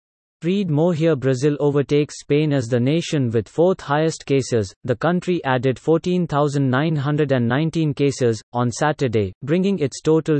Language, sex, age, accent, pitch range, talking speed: English, male, 30-49, Indian, 130-160 Hz, 125 wpm